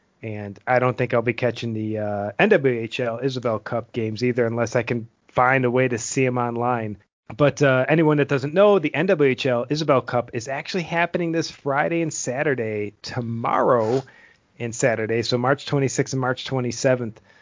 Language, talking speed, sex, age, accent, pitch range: English, 170 wpm, male, 30-49, American, 120-145 Hz